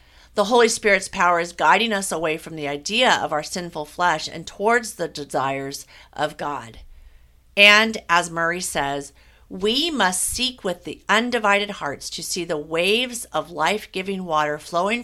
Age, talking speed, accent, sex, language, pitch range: 50-69, 160 wpm, American, female, English, 150-200 Hz